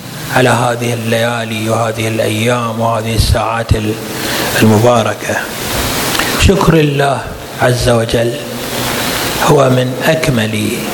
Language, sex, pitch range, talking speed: Arabic, male, 120-155 Hz, 80 wpm